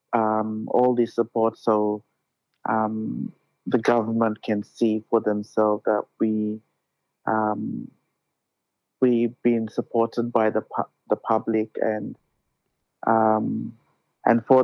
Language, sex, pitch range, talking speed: English, male, 110-120 Hz, 110 wpm